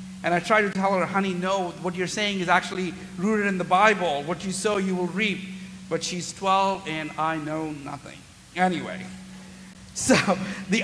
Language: English